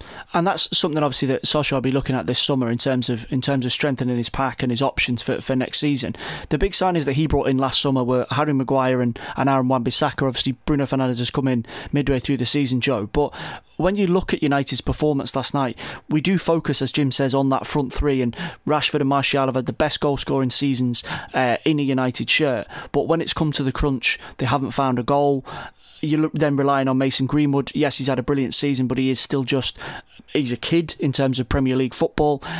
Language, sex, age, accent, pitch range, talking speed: English, male, 30-49, British, 130-150 Hz, 235 wpm